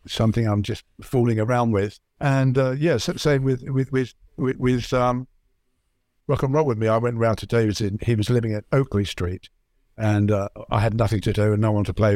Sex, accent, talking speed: male, British, 230 wpm